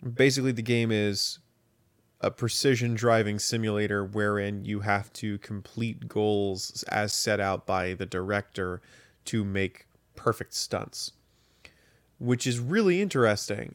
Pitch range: 100-120 Hz